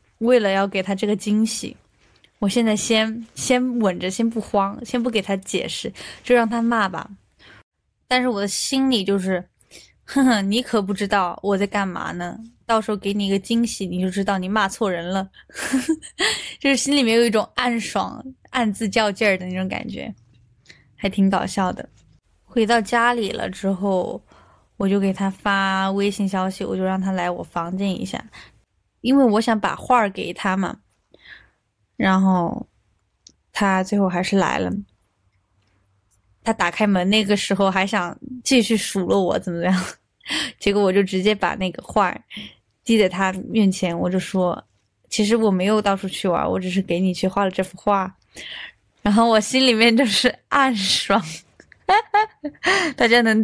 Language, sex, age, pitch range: Chinese, female, 10-29, 185-230 Hz